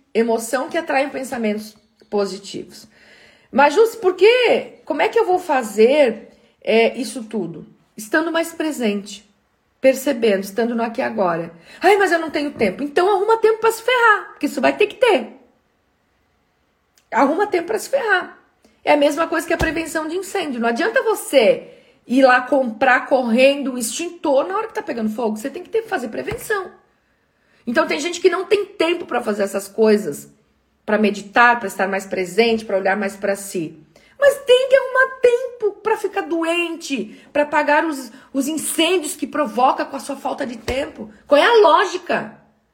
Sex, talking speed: female, 175 wpm